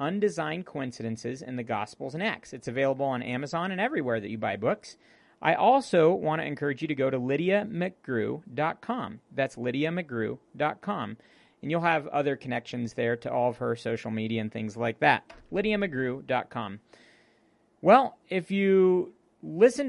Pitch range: 125-175 Hz